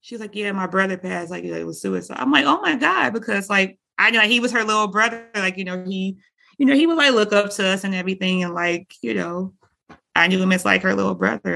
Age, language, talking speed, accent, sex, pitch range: 30-49, English, 265 wpm, American, female, 165-200 Hz